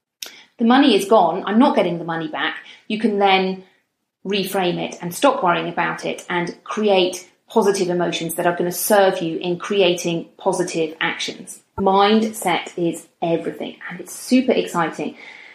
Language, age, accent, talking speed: English, 40-59, British, 160 wpm